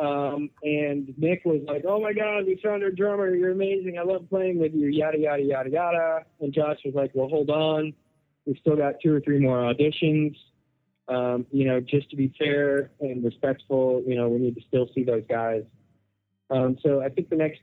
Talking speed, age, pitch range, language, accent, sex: 210 wpm, 20-39, 130-170 Hz, English, American, male